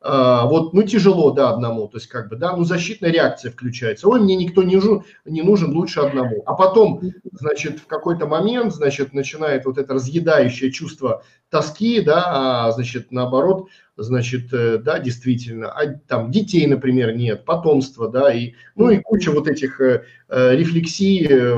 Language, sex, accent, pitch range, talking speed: Russian, male, native, 130-185 Hz, 160 wpm